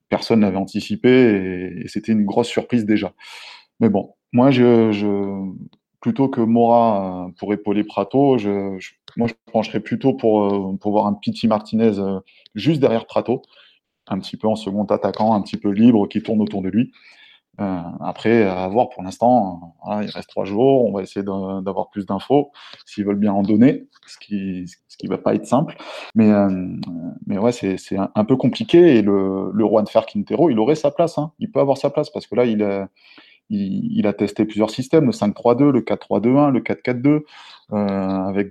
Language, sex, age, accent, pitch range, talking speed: French, male, 20-39, French, 100-120 Hz, 195 wpm